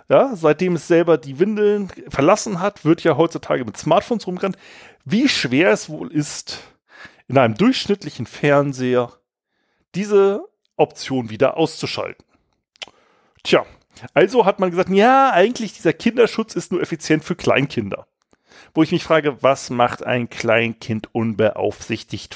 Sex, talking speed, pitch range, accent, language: male, 135 wpm, 140-200 Hz, German, German